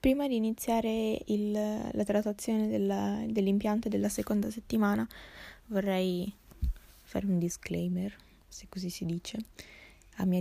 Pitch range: 165-195 Hz